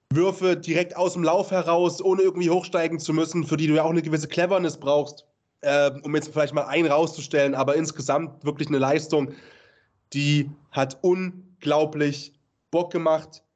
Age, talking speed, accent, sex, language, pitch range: 20-39, 165 wpm, German, male, German, 160-225 Hz